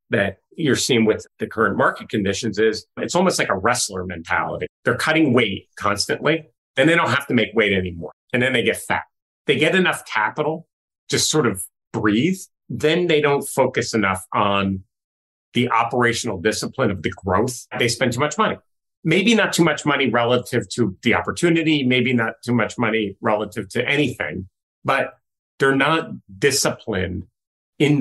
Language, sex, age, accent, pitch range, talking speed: English, male, 40-59, American, 95-130 Hz, 170 wpm